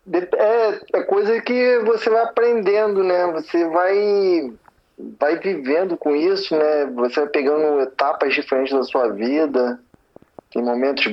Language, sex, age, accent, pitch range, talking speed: English, male, 20-39, Brazilian, 125-165 Hz, 130 wpm